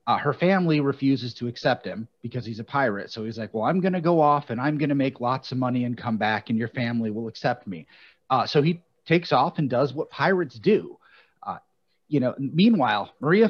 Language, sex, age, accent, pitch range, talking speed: English, male, 30-49, American, 120-155 Hz, 230 wpm